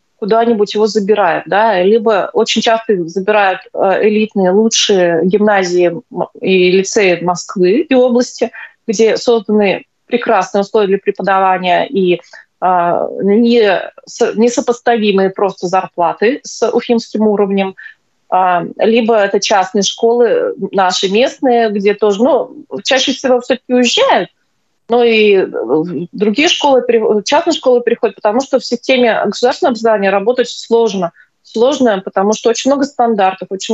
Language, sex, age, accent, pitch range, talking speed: Russian, female, 20-39, native, 195-240 Hz, 115 wpm